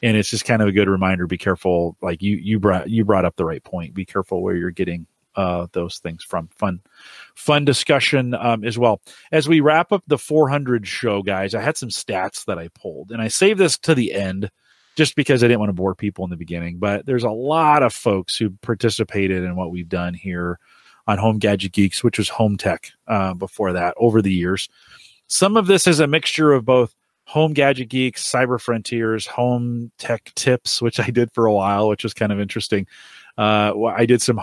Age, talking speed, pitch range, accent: 30-49, 220 wpm, 95-125 Hz, American